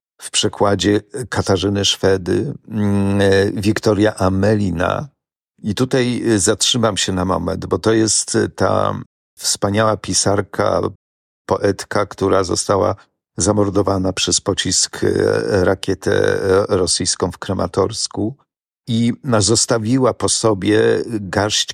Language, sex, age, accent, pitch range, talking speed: Polish, male, 50-69, native, 95-110 Hz, 90 wpm